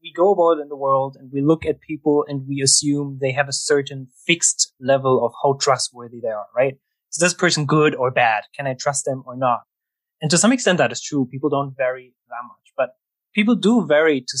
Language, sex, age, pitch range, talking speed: English, male, 20-39, 135-170 Hz, 230 wpm